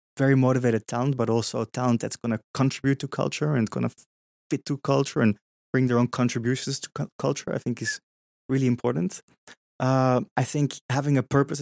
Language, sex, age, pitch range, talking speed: English, male, 20-39, 120-135 Hz, 195 wpm